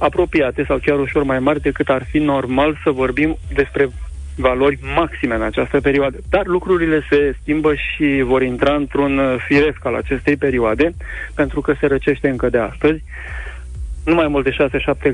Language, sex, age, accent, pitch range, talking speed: Romanian, male, 30-49, native, 130-145 Hz, 165 wpm